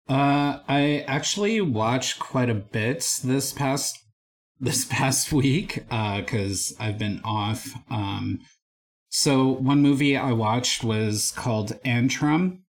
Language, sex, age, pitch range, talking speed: English, male, 30-49, 105-130 Hz, 120 wpm